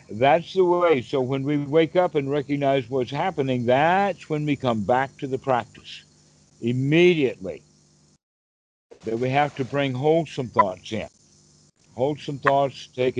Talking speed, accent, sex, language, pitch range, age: 145 wpm, American, male, English, 120-155 Hz, 60-79